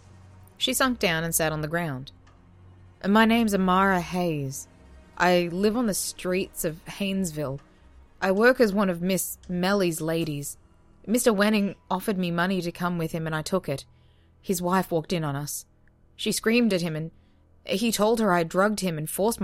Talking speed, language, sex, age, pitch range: 180 wpm, English, female, 20-39, 125-190 Hz